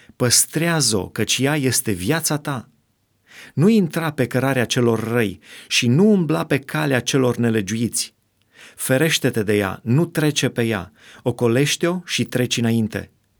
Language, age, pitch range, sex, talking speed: Romanian, 30-49, 105-135 Hz, male, 135 wpm